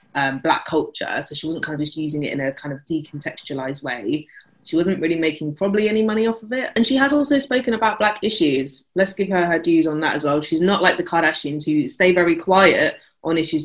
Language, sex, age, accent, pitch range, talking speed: English, female, 20-39, British, 150-190 Hz, 240 wpm